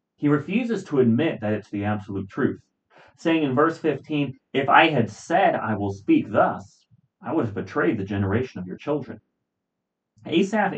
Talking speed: 175 wpm